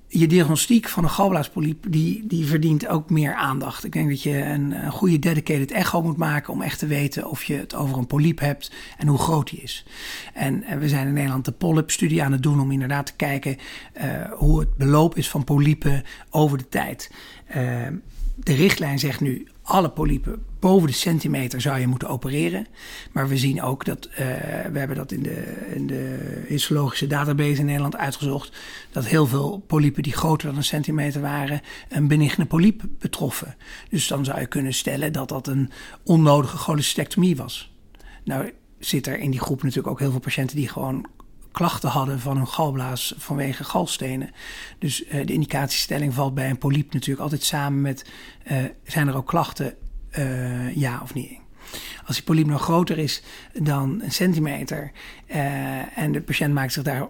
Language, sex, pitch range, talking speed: Dutch, male, 135-160 Hz, 185 wpm